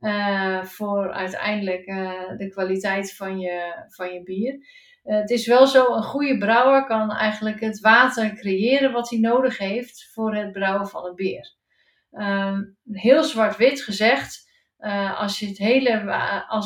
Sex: female